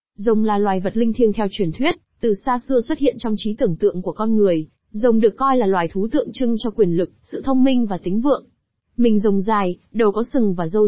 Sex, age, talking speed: female, 20-39, 255 wpm